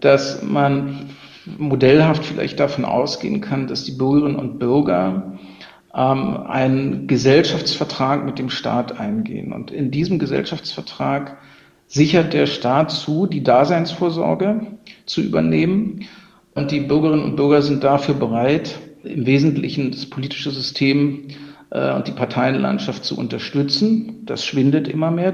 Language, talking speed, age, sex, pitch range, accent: German, 130 wpm, 50-69, male, 130-155 Hz, German